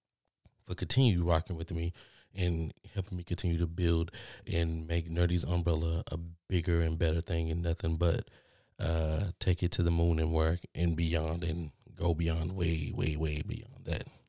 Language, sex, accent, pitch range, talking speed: English, male, American, 85-110 Hz, 170 wpm